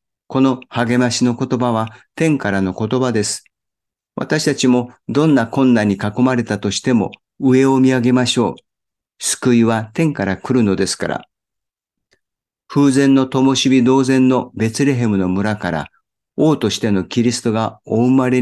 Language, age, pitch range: Japanese, 50-69, 105-135 Hz